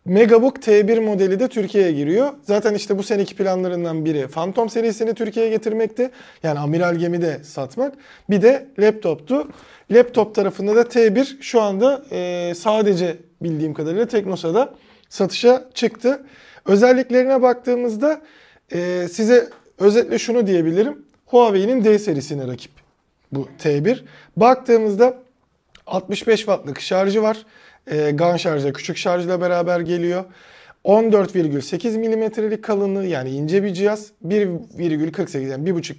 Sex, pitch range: male, 165-220 Hz